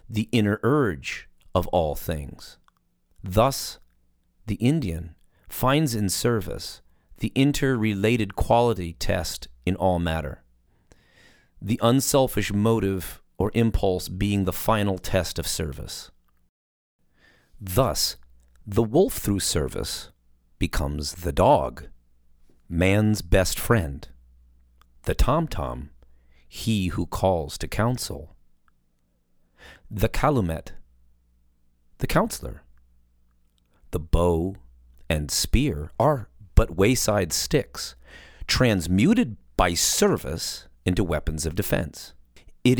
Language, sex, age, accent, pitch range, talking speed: English, male, 40-59, American, 70-110 Hz, 95 wpm